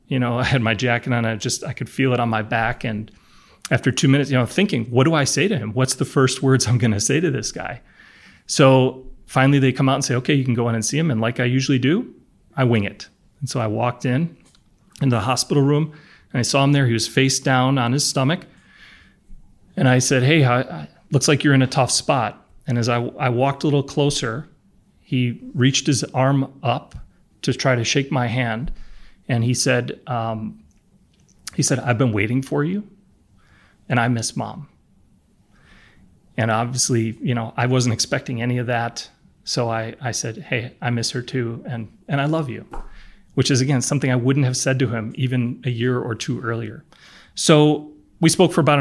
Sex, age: male, 30-49